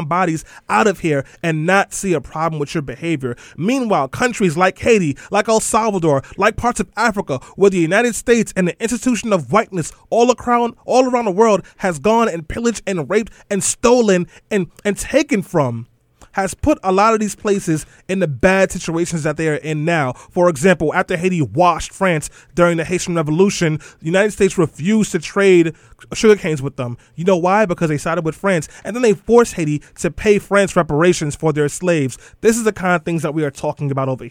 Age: 30-49